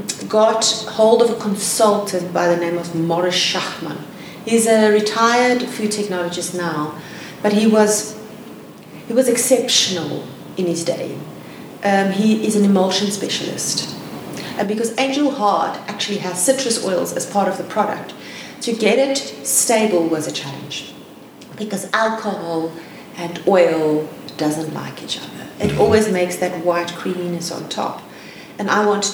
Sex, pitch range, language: female, 175-220 Hz, English